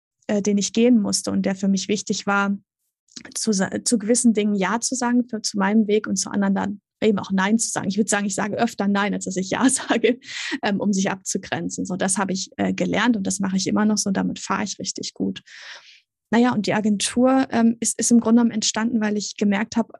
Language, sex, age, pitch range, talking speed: German, female, 20-39, 200-235 Hz, 230 wpm